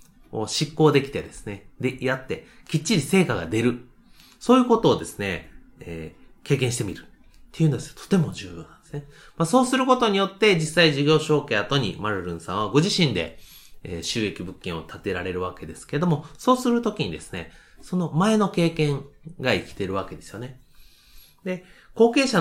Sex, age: male, 30-49